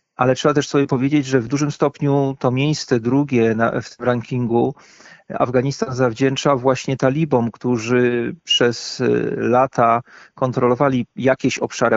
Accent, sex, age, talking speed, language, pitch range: native, male, 40-59, 120 wpm, Polish, 120-140 Hz